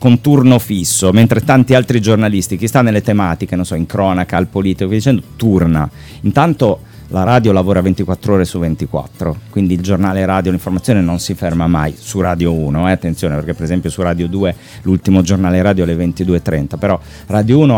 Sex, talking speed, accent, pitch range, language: male, 185 wpm, native, 85-110 Hz, Italian